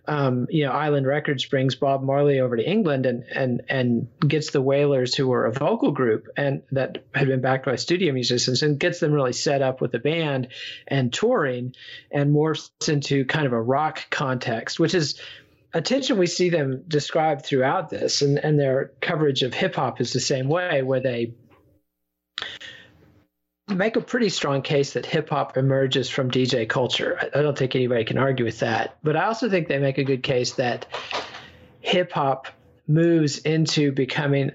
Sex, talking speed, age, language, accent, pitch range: male, 180 wpm, 40-59, English, American, 130-150 Hz